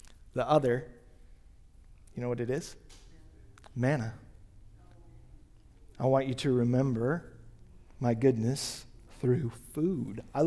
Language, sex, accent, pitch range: English, male, American, 115-145 Hz